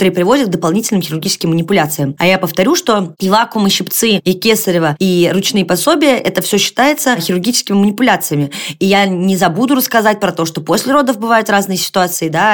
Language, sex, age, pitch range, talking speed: Russian, female, 20-39, 170-225 Hz, 185 wpm